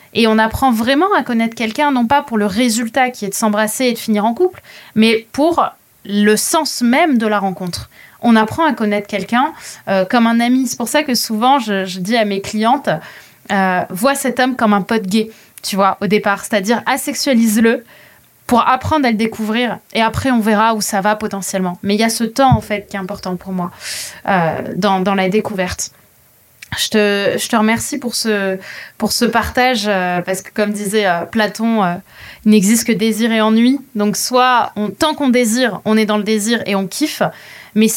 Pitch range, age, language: 200-240 Hz, 20-39, French